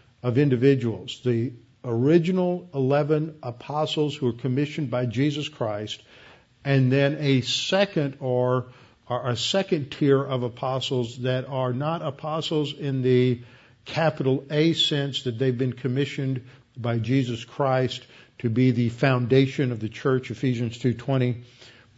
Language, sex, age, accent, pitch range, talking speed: English, male, 50-69, American, 120-150 Hz, 130 wpm